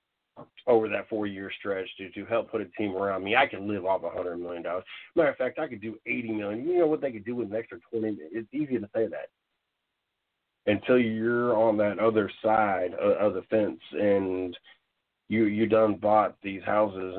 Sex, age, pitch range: male, 40-59, 100-115 Hz